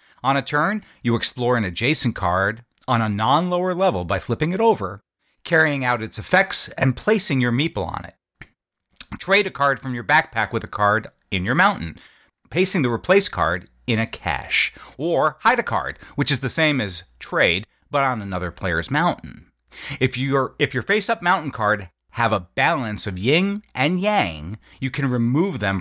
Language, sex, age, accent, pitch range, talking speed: English, male, 40-59, American, 100-145 Hz, 180 wpm